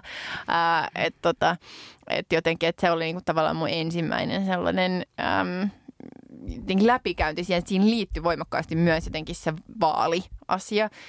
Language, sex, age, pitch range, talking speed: Finnish, female, 20-39, 160-190 Hz, 120 wpm